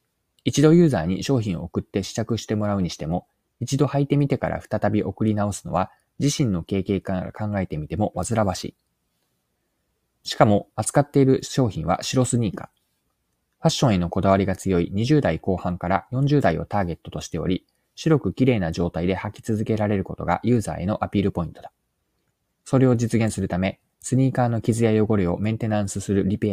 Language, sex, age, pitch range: Japanese, male, 20-39, 90-125 Hz